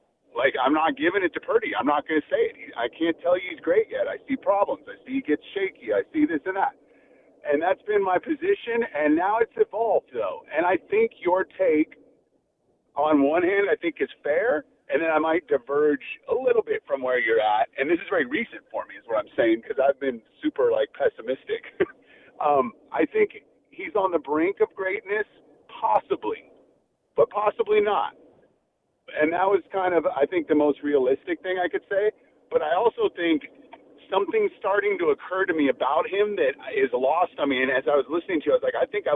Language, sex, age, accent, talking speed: English, male, 40-59, American, 215 wpm